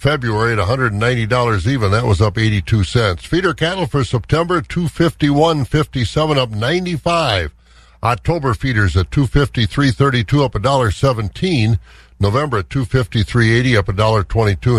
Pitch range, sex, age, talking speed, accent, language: 100-130 Hz, male, 60-79, 165 wpm, American, English